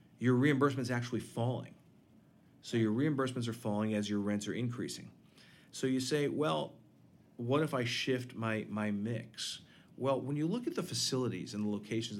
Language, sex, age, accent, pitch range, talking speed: English, male, 40-59, American, 105-130 Hz, 170 wpm